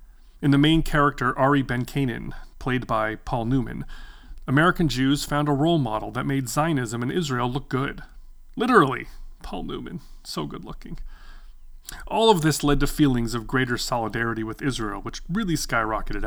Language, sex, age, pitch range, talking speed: English, male, 30-49, 125-165 Hz, 160 wpm